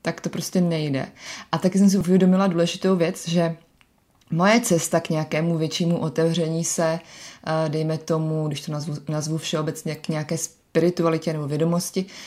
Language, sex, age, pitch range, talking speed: Czech, female, 20-39, 155-175 Hz, 150 wpm